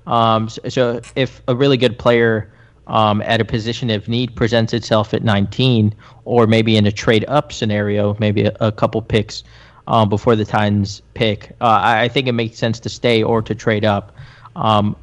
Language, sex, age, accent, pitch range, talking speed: English, male, 20-39, American, 110-120 Hz, 195 wpm